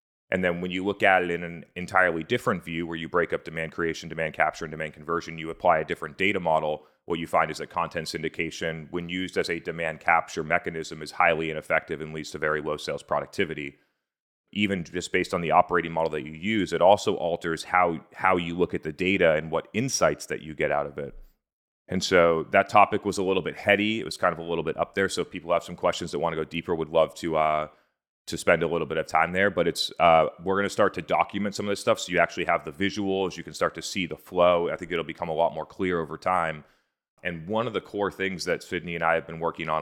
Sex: male